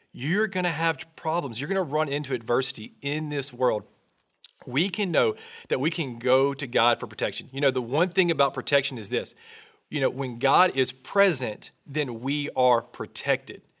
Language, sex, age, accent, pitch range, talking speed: English, male, 40-59, American, 130-170 Hz, 190 wpm